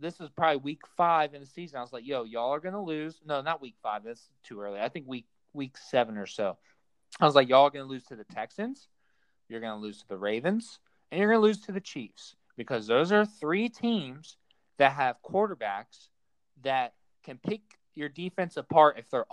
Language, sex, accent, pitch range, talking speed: English, male, American, 130-195 Hz, 225 wpm